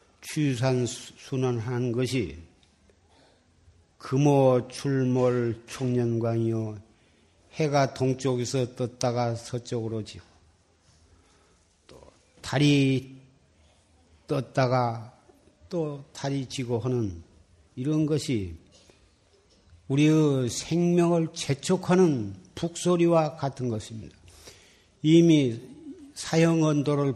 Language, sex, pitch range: Korean, male, 100-150 Hz